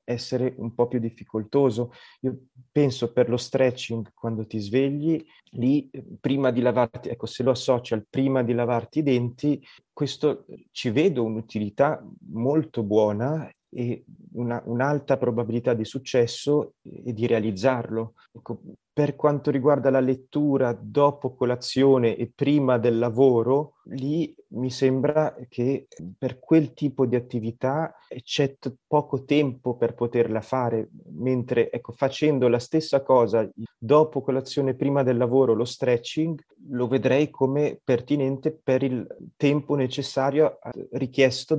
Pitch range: 120-135 Hz